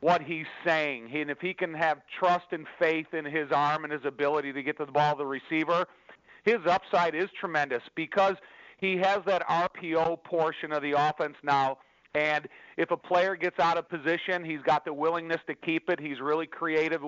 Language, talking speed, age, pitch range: English, 200 wpm, 40-59, 150-170 Hz